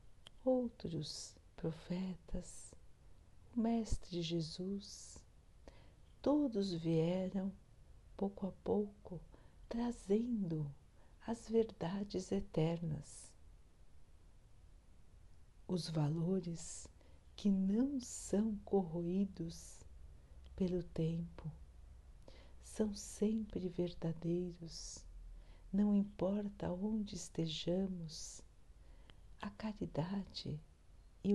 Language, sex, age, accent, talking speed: Portuguese, female, 60-79, Brazilian, 60 wpm